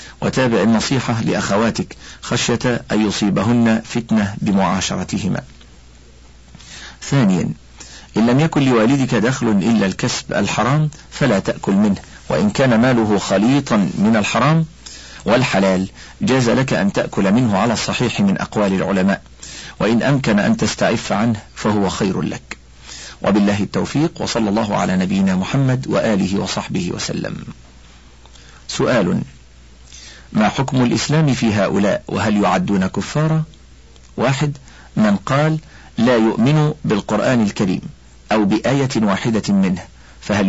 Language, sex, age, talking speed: Arabic, male, 50-69, 115 wpm